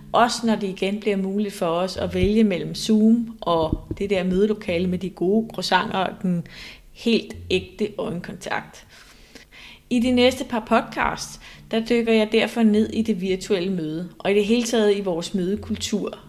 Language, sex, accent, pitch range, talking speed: Danish, female, native, 185-230 Hz, 175 wpm